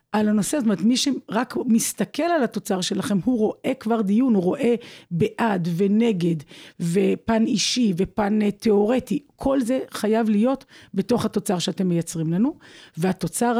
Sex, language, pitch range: female, Hebrew, 190-235 Hz